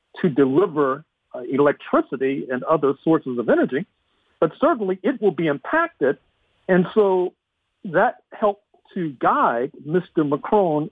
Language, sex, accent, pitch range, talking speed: English, male, American, 150-205 Hz, 120 wpm